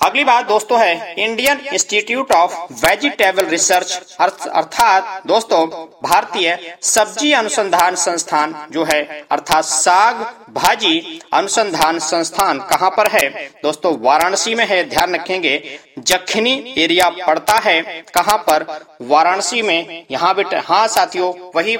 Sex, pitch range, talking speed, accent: male, 155-200 Hz, 120 wpm, native